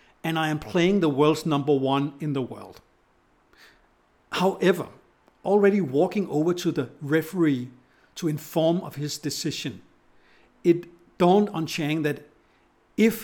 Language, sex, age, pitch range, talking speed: English, male, 60-79, 145-190 Hz, 130 wpm